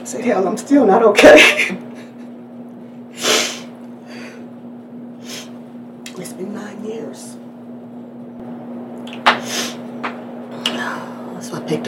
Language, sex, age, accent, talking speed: English, female, 40-59, American, 70 wpm